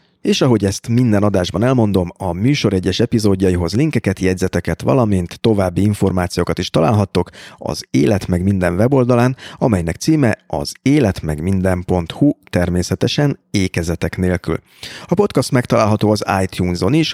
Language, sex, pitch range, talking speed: Hungarian, male, 90-125 Hz, 125 wpm